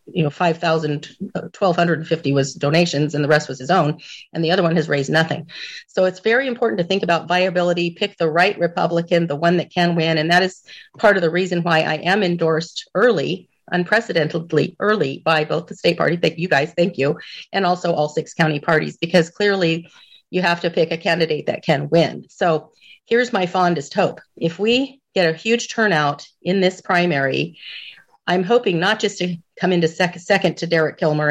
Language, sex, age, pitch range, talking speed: English, female, 40-59, 155-180 Hz, 195 wpm